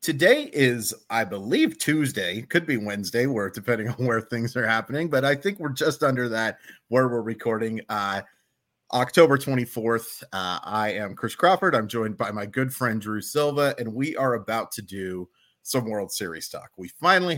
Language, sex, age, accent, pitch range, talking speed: English, male, 30-49, American, 110-140 Hz, 180 wpm